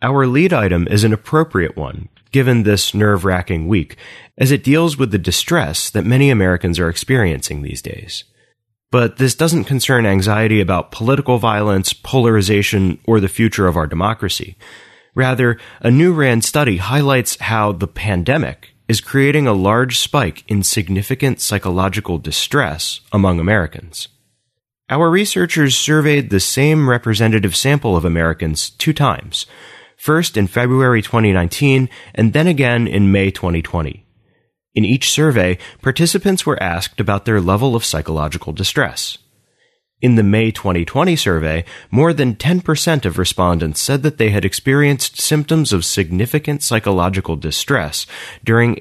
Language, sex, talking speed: English, male, 140 wpm